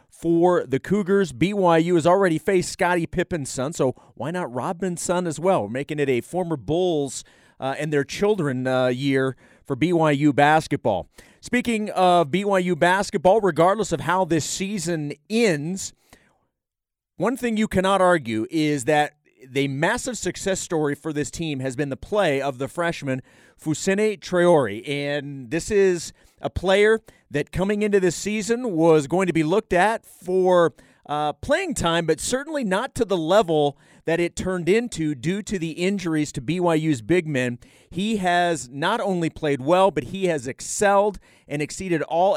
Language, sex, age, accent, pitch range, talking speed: English, male, 40-59, American, 145-190 Hz, 165 wpm